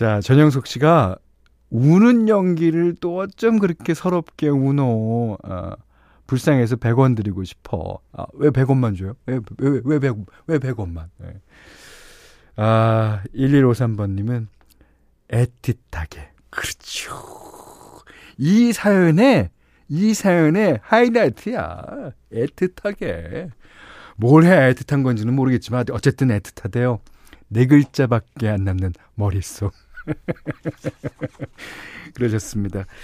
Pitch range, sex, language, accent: 105-155 Hz, male, Korean, native